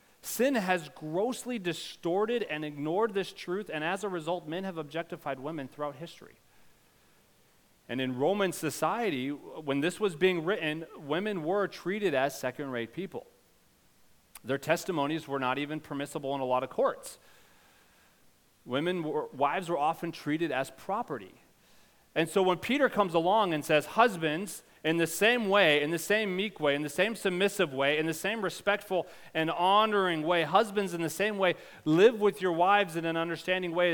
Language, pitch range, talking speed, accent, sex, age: English, 155-200 Hz, 165 wpm, American, male, 30-49